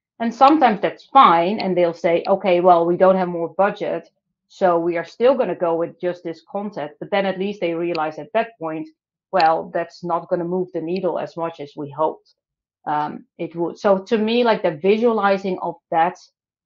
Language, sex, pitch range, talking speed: English, female, 170-200 Hz, 210 wpm